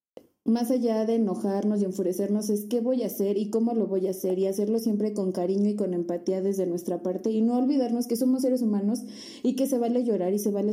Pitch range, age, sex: 195-245 Hz, 20-39, female